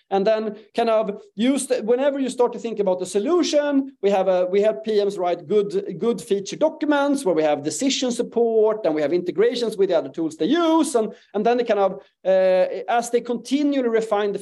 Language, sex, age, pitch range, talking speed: English, male, 30-49, 190-260 Hz, 215 wpm